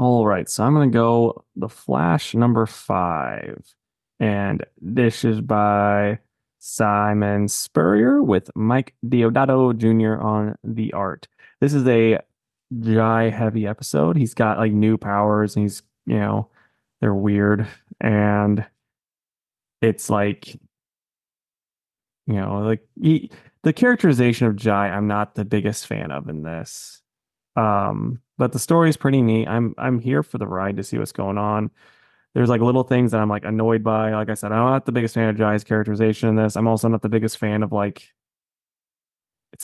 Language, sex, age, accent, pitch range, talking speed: English, male, 20-39, American, 105-125 Hz, 165 wpm